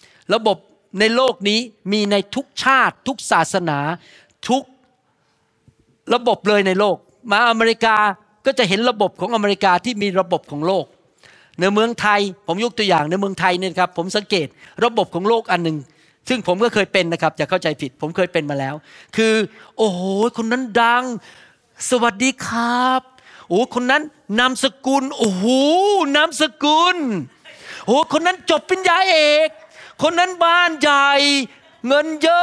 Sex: male